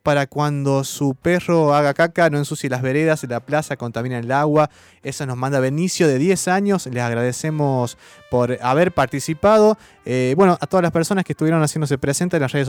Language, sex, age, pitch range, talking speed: Spanish, male, 20-39, 135-165 Hz, 190 wpm